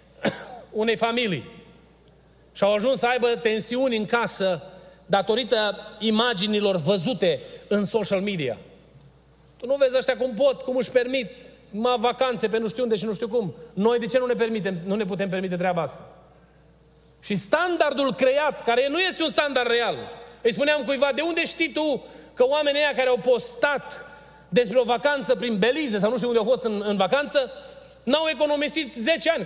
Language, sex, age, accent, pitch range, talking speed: Romanian, male, 30-49, native, 175-260 Hz, 180 wpm